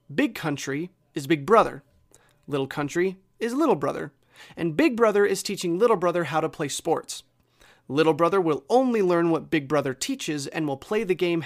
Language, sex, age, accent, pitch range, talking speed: English, male, 30-49, American, 145-195 Hz, 185 wpm